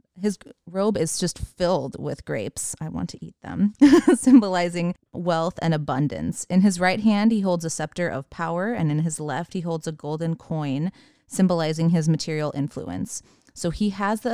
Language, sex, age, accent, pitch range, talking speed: English, female, 30-49, American, 155-185 Hz, 180 wpm